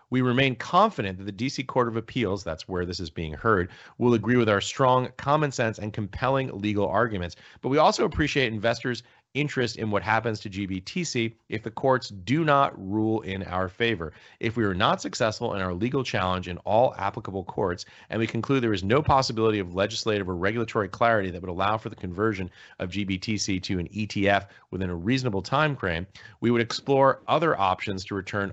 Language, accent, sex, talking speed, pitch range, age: English, American, male, 200 wpm, 95-125 Hz, 30-49